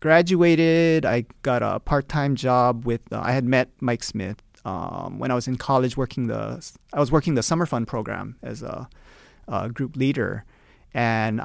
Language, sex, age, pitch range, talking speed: English, male, 30-49, 120-160 Hz, 180 wpm